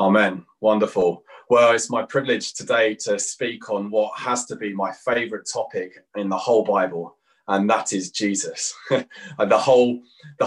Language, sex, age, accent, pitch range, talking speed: English, male, 30-49, British, 100-125 Hz, 160 wpm